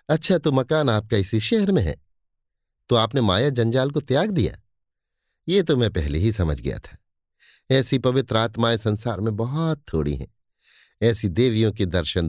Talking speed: 170 wpm